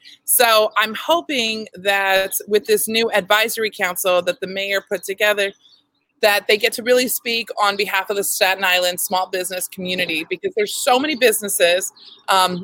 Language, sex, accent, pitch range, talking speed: English, female, American, 185-230 Hz, 165 wpm